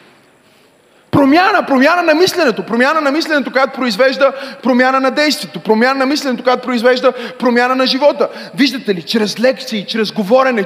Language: Bulgarian